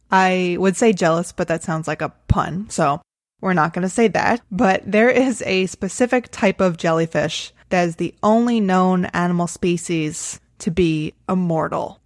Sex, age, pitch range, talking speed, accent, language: female, 20-39, 170-225 Hz, 175 wpm, American, English